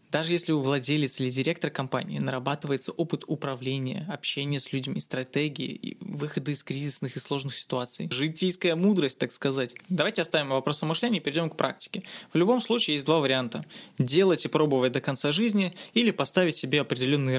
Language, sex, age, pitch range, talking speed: Russian, male, 20-39, 140-185 Hz, 175 wpm